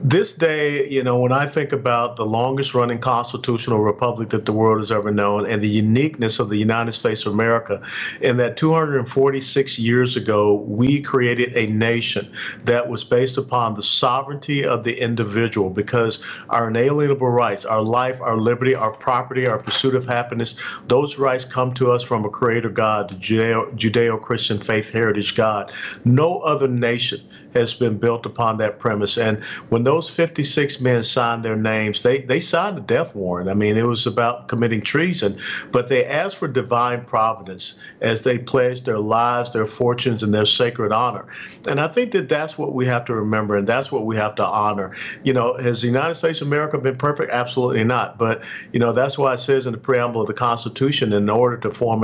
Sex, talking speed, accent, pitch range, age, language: male, 195 wpm, American, 110-130 Hz, 50-69, English